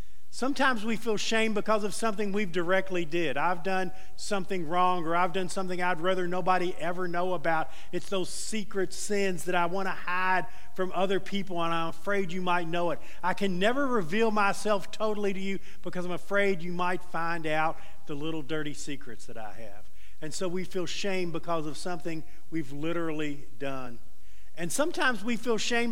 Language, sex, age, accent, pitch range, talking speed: English, male, 50-69, American, 160-205 Hz, 190 wpm